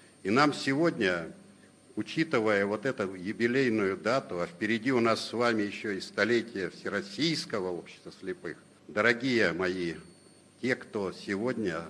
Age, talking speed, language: 60-79, 125 wpm, Russian